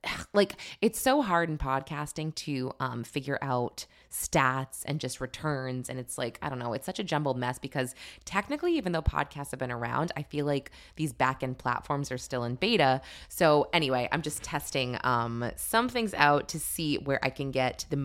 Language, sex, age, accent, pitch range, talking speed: English, female, 20-39, American, 130-170 Hz, 195 wpm